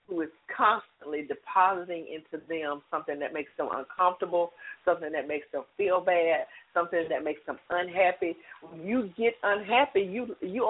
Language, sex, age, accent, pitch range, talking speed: English, female, 40-59, American, 160-205 Hz, 150 wpm